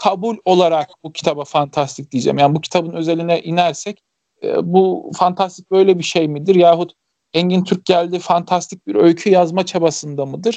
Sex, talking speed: male, 155 wpm